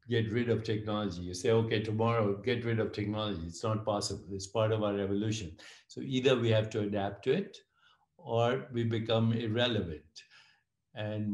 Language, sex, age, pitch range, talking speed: English, male, 60-79, 105-120 Hz, 175 wpm